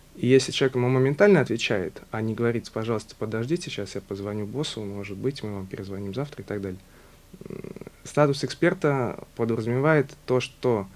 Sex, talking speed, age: male, 160 wpm, 20-39